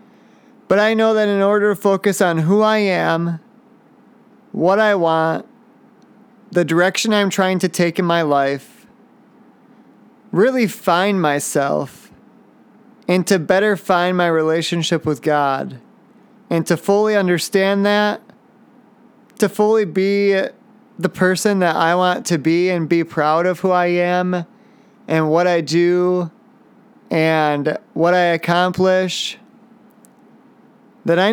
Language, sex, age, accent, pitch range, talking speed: English, male, 30-49, American, 175-230 Hz, 130 wpm